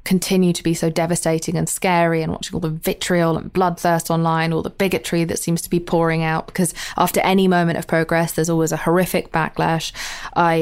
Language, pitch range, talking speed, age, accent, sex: English, 160-175 Hz, 205 wpm, 20-39, British, female